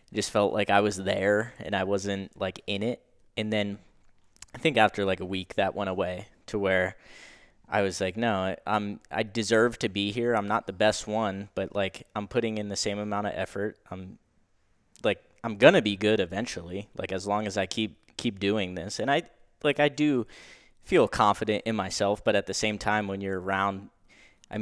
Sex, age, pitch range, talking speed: male, 10-29, 95-110 Hz, 205 wpm